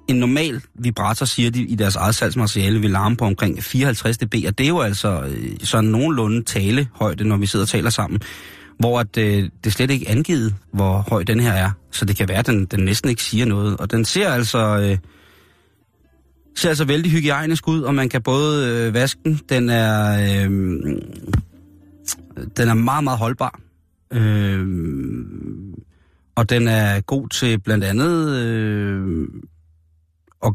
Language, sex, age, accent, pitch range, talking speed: Danish, male, 30-49, native, 100-125 Hz, 170 wpm